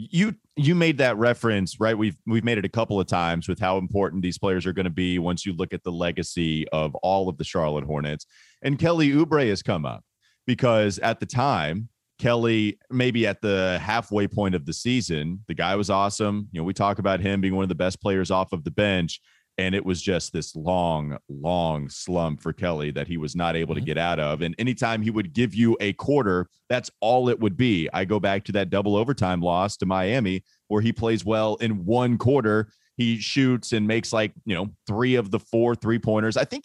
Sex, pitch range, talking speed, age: male, 95-125 Hz, 225 wpm, 30-49